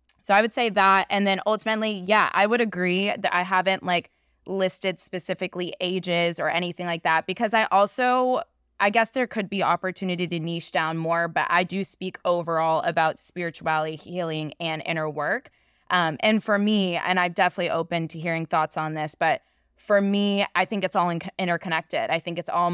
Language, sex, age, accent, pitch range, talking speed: English, female, 20-39, American, 165-190 Hz, 190 wpm